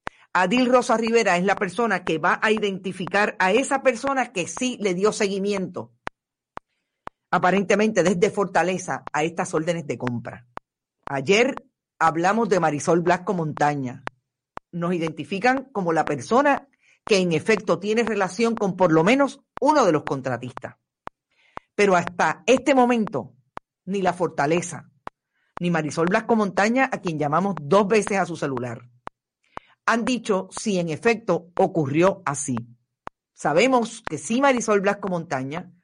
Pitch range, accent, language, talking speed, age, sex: 165-230 Hz, American, Spanish, 135 wpm, 50-69, female